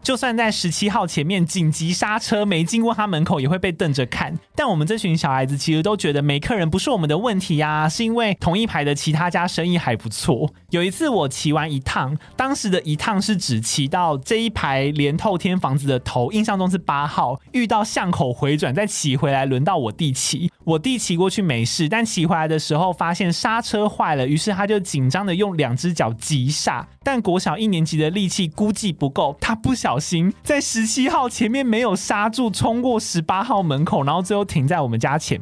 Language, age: Chinese, 20-39